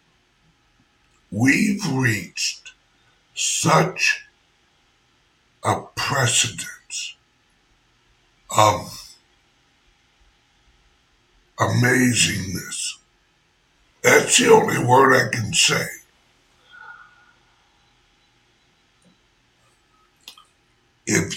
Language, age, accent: English, 60-79, American